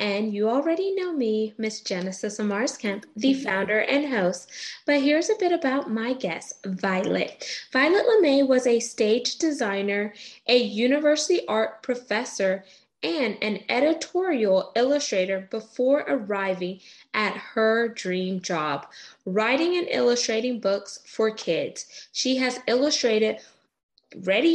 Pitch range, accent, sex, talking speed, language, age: 205-285 Hz, American, female, 125 wpm, English, 20-39